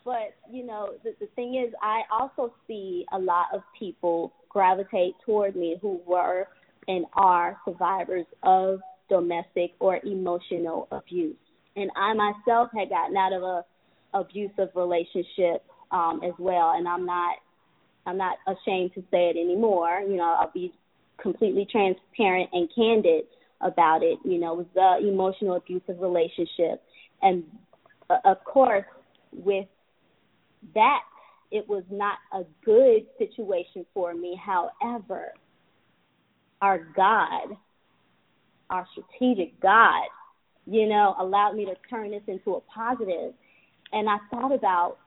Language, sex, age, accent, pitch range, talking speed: English, female, 20-39, American, 180-225 Hz, 135 wpm